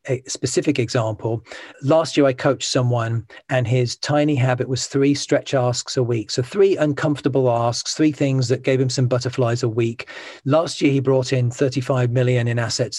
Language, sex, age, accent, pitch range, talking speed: English, male, 40-59, British, 125-140 Hz, 185 wpm